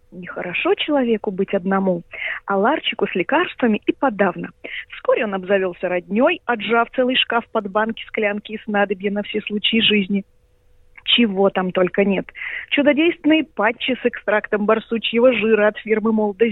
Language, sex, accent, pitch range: Russian, female, native, 200-285 Hz